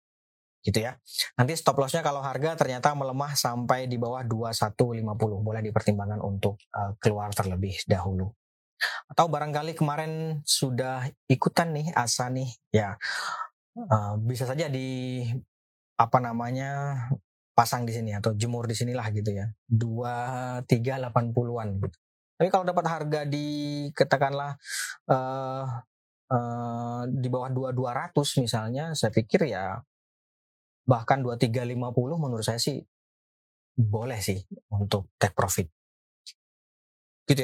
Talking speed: 115 wpm